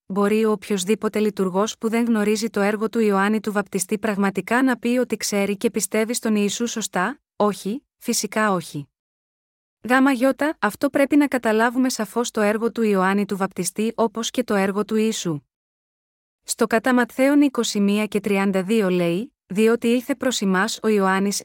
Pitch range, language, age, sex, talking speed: 200-240 Hz, Greek, 20-39, female, 155 wpm